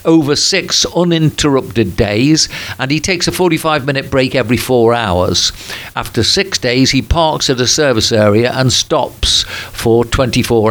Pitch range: 115-135 Hz